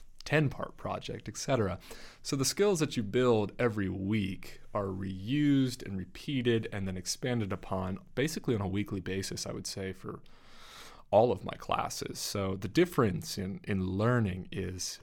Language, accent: English, American